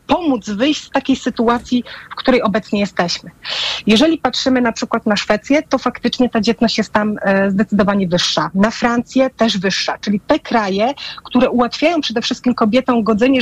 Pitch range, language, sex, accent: 215-260 Hz, Polish, female, native